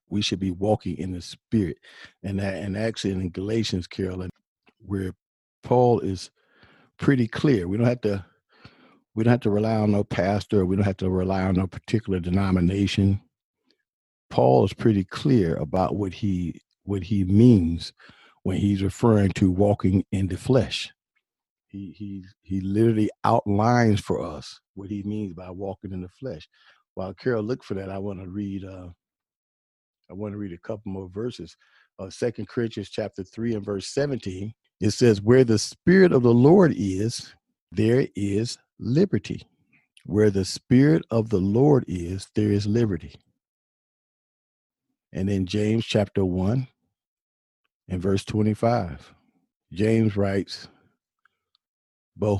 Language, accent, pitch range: English, American, 95-115 Hz